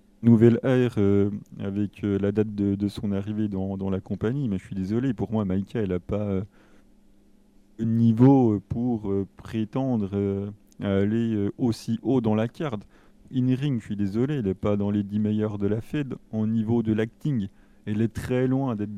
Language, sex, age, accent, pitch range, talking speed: French, male, 30-49, French, 100-115 Hz, 195 wpm